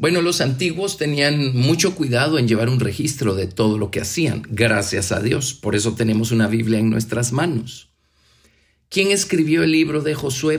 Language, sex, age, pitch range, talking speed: Spanish, male, 50-69, 115-150 Hz, 180 wpm